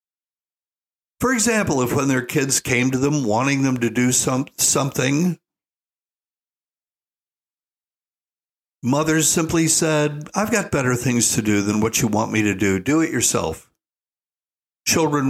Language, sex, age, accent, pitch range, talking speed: English, male, 60-79, American, 120-160 Hz, 135 wpm